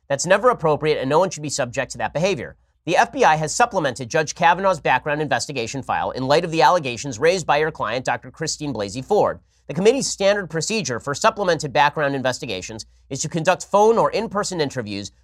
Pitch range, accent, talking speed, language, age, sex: 130-180 Hz, American, 195 wpm, English, 30-49, male